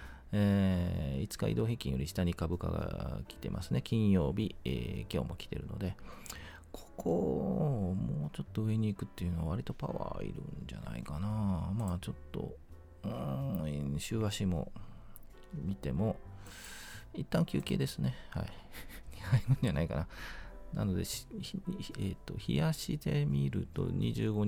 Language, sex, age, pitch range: Japanese, male, 40-59, 75-105 Hz